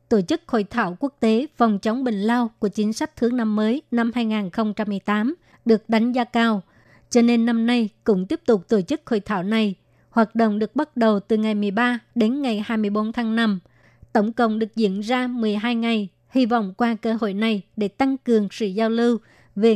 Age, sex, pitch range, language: 20-39, male, 215-240 Hz, Vietnamese